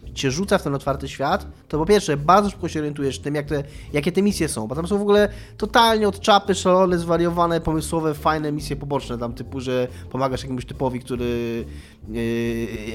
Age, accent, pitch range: 20-39, native, 125-160 Hz